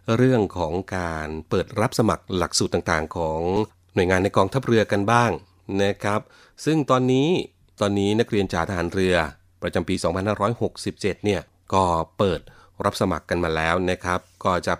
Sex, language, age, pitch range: male, Thai, 30-49, 85-100 Hz